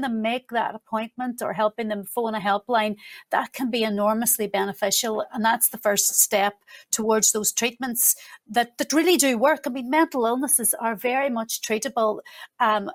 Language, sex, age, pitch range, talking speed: English, female, 40-59, 215-250 Hz, 170 wpm